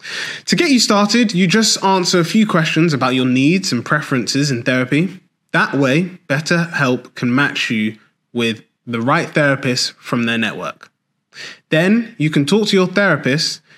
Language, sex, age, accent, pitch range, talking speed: English, male, 20-39, British, 140-190 Hz, 160 wpm